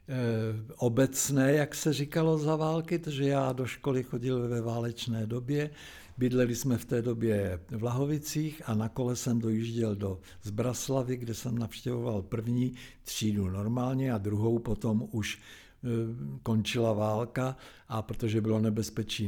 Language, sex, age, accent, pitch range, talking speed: Czech, male, 60-79, native, 105-130 Hz, 135 wpm